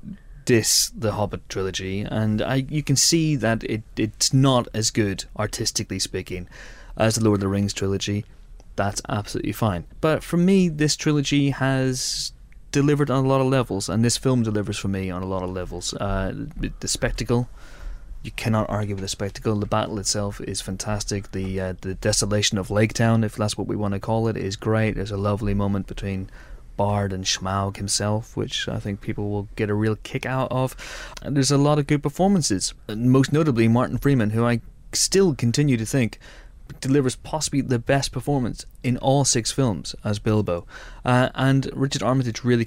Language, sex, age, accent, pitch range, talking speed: English, male, 20-39, British, 95-130 Hz, 190 wpm